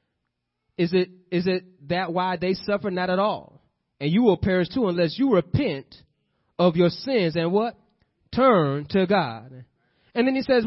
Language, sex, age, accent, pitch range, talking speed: English, male, 30-49, American, 145-205 Hz, 175 wpm